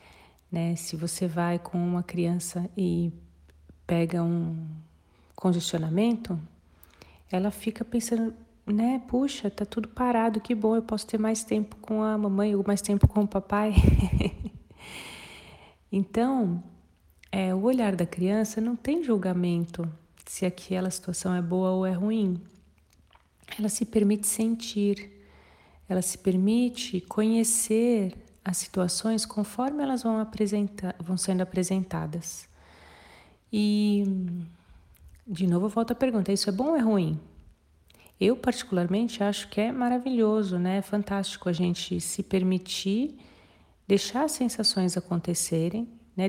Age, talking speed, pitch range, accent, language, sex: 40-59, 125 wpm, 175-220 Hz, Brazilian, Portuguese, female